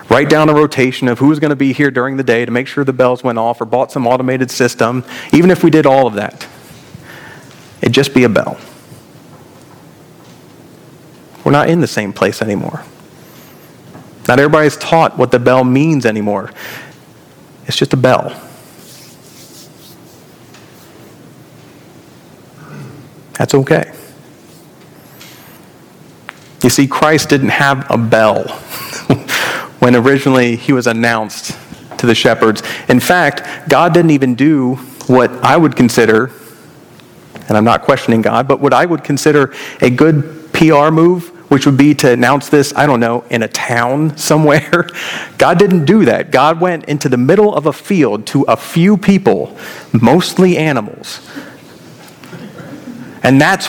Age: 40-59